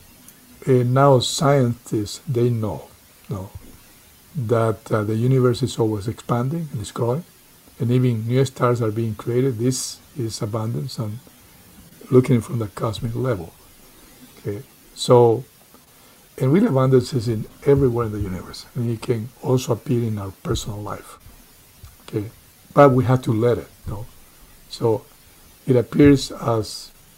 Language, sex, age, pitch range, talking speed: English, male, 60-79, 110-130 Hz, 145 wpm